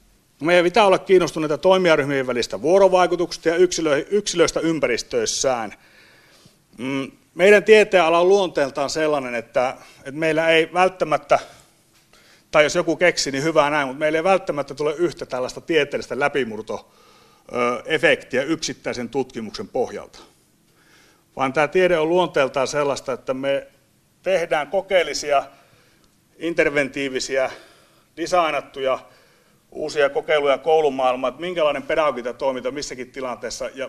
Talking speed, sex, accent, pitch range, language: 105 wpm, male, native, 140-185 Hz, Finnish